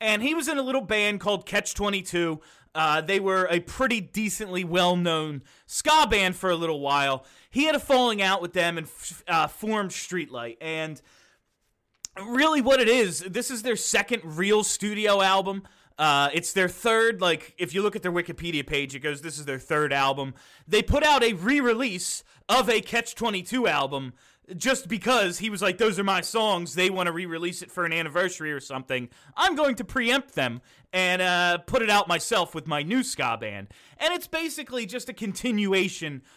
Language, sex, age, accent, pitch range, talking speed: English, male, 30-49, American, 165-230 Hz, 185 wpm